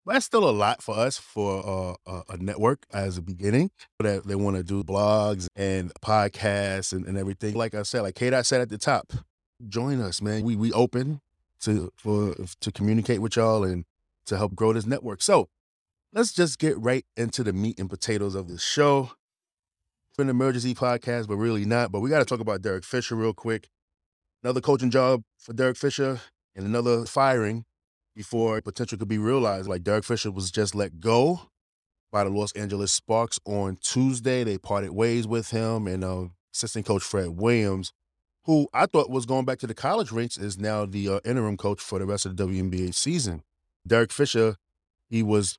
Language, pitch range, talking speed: English, 95-120 Hz, 195 wpm